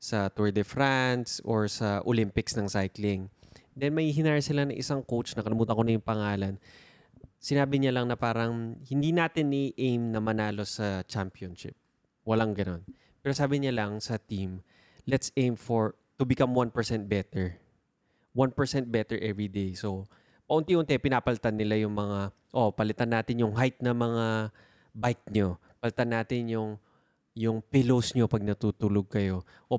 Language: Filipino